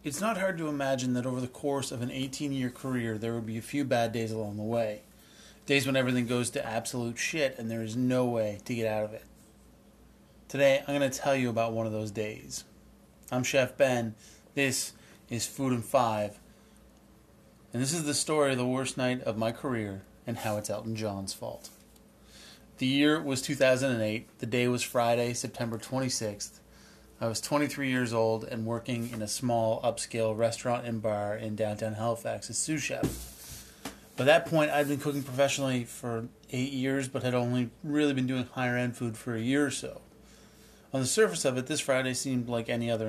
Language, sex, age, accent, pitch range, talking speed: English, male, 30-49, American, 115-135 Hz, 195 wpm